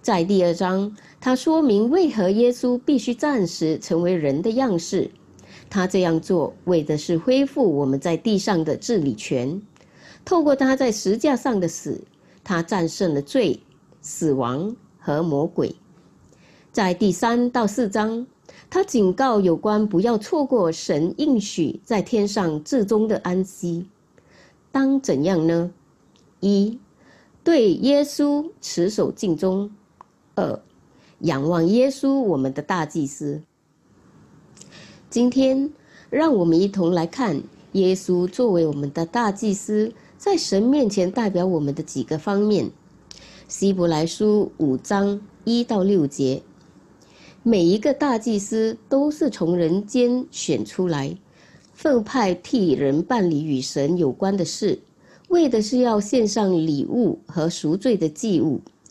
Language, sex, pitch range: English, female, 170-245 Hz